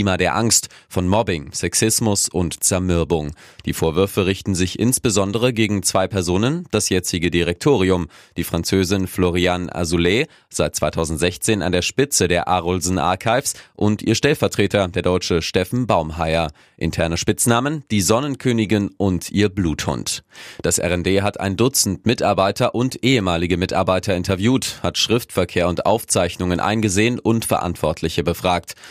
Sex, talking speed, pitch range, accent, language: male, 130 wpm, 90-105 Hz, German, German